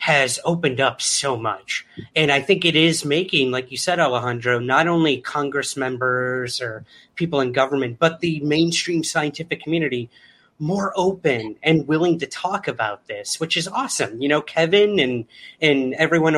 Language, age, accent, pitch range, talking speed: English, 30-49, American, 130-175 Hz, 165 wpm